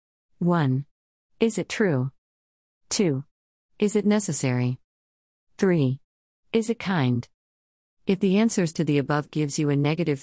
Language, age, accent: English, 50-69, American